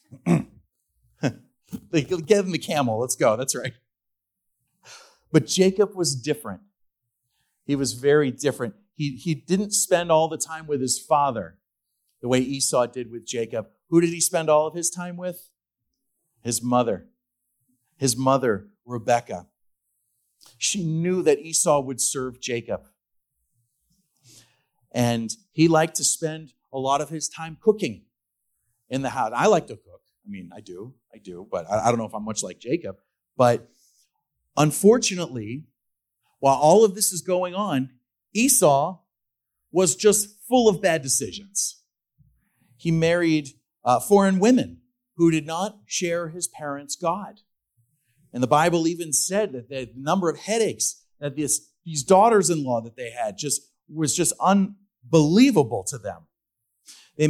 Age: 40-59